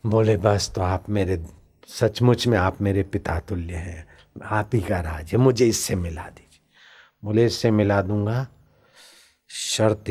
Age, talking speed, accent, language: 60-79, 155 wpm, native, Hindi